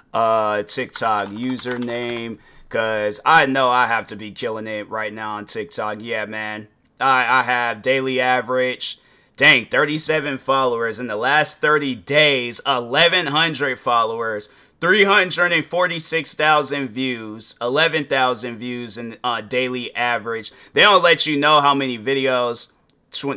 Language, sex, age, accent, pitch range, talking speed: English, male, 30-49, American, 120-170 Hz, 145 wpm